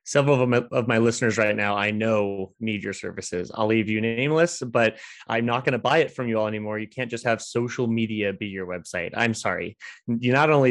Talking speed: 225 wpm